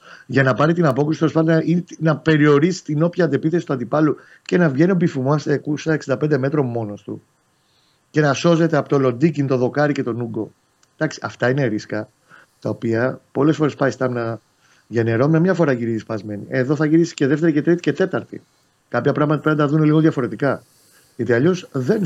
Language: Greek